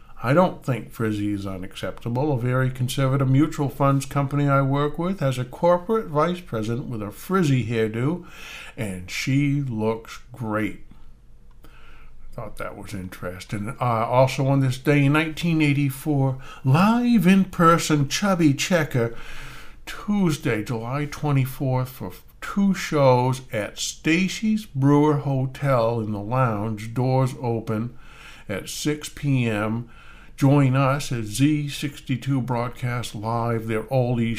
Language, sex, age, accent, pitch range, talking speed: English, male, 60-79, American, 110-145 Hz, 120 wpm